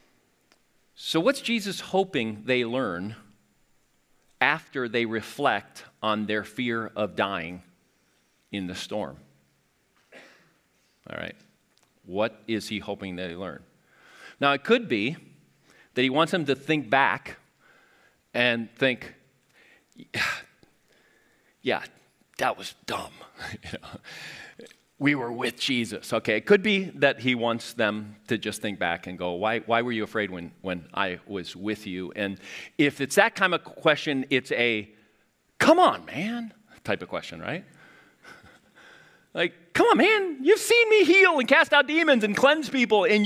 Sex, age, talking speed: male, 40-59, 145 wpm